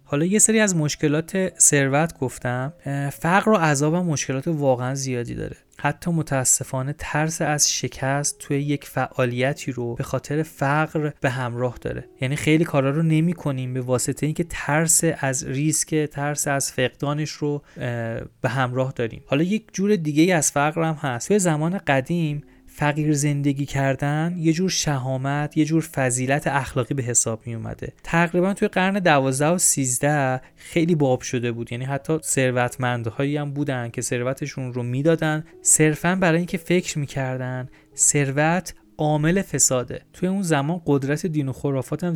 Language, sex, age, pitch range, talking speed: Persian, male, 30-49, 130-155 Hz, 150 wpm